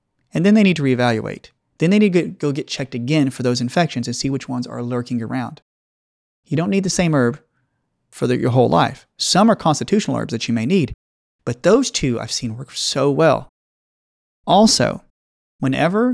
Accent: American